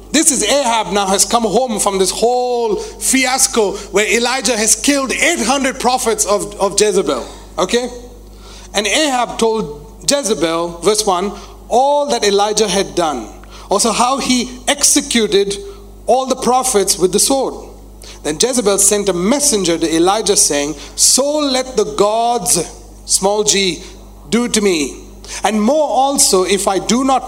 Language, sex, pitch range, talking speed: English, male, 185-245 Hz, 145 wpm